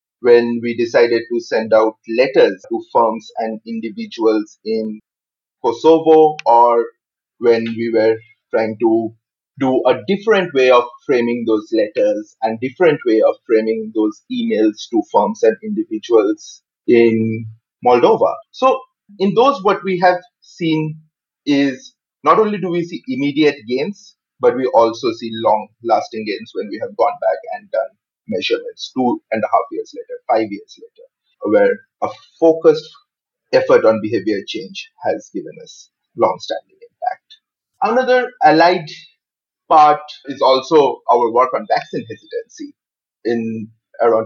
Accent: Indian